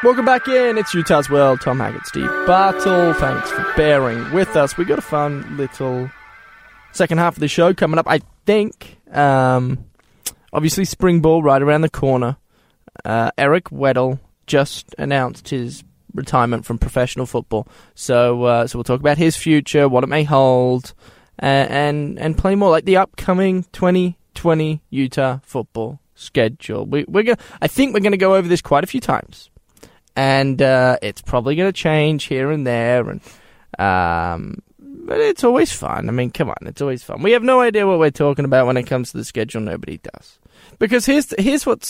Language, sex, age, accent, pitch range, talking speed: English, male, 10-29, Australian, 130-185 Hz, 185 wpm